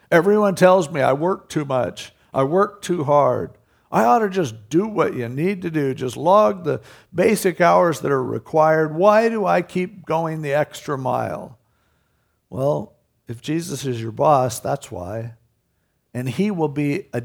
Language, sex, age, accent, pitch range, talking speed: English, male, 60-79, American, 120-175 Hz, 175 wpm